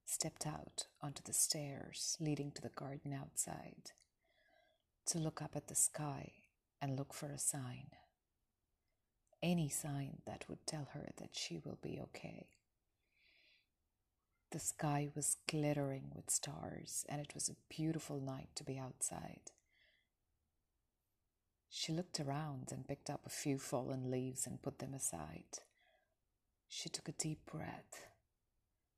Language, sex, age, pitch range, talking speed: English, female, 30-49, 125-155 Hz, 135 wpm